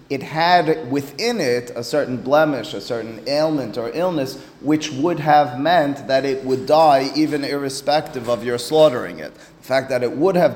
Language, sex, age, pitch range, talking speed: English, male, 30-49, 125-155 Hz, 175 wpm